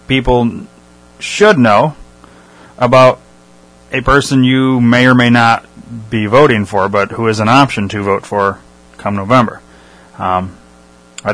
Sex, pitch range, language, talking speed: male, 85-125 Hz, English, 140 wpm